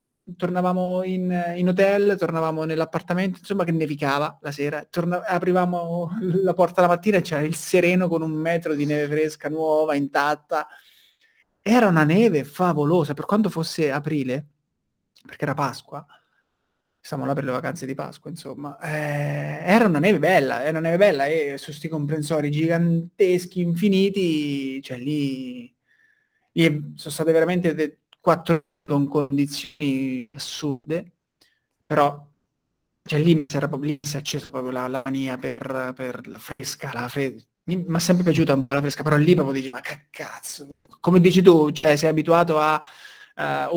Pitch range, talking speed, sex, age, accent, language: 145-175 Hz, 150 wpm, male, 30-49, native, Italian